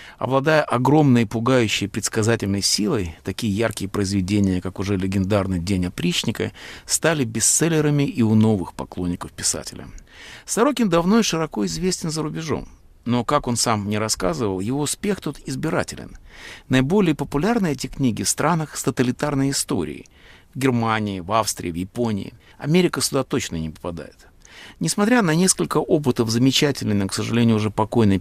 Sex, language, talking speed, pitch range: male, Russian, 145 wpm, 100-145 Hz